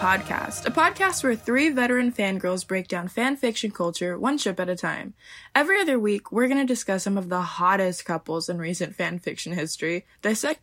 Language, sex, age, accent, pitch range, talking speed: English, female, 20-39, American, 170-230 Hz, 200 wpm